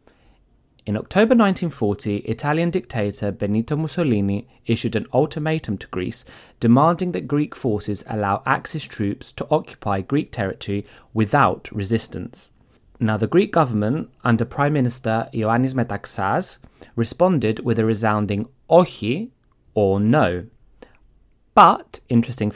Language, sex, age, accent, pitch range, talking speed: Greek, male, 30-49, British, 105-130 Hz, 115 wpm